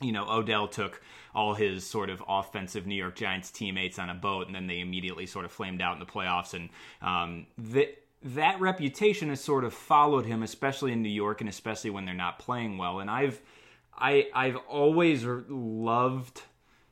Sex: male